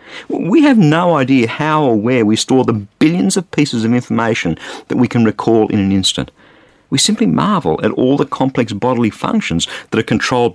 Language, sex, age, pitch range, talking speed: English, male, 50-69, 100-140 Hz, 195 wpm